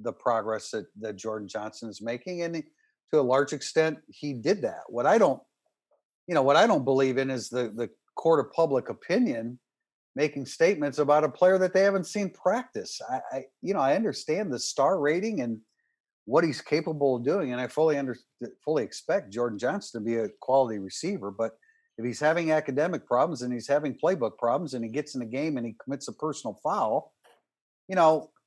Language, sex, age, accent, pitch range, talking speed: English, male, 50-69, American, 130-165 Hz, 205 wpm